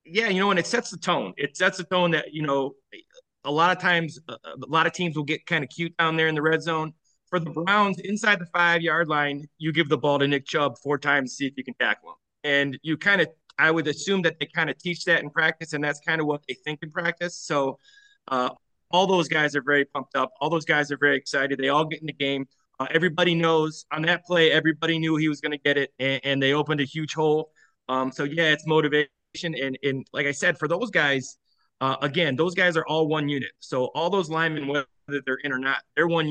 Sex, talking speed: male, 255 wpm